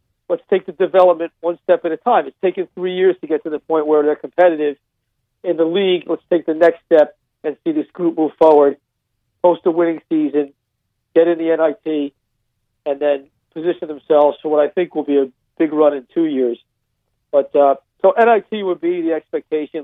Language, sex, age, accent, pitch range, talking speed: English, male, 50-69, American, 140-175 Hz, 205 wpm